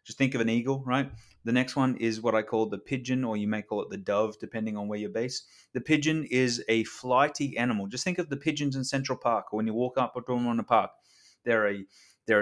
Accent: Australian